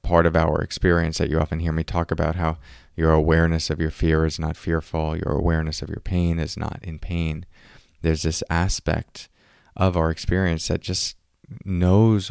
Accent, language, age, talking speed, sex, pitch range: American, English, 20-39, 185 wpm, male, 80-95 Hz